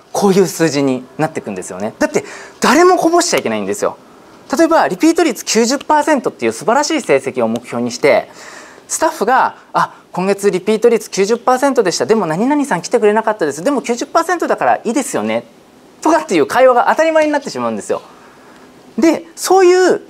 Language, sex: Japanese, male